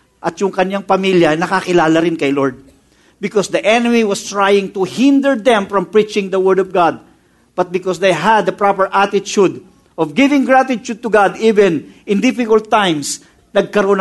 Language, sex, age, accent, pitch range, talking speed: English, male, 50-69, Filipino, 165-230 Hz, 165 wpm